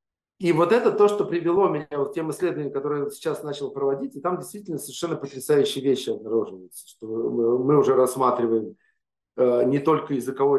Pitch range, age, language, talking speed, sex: 125-155 Hz, 40-59, Russian, 170 wpm, male